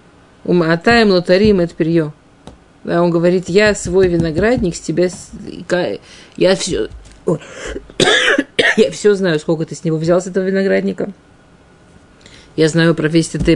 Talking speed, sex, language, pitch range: 135 wpm, female, Russian, 155-195 Hz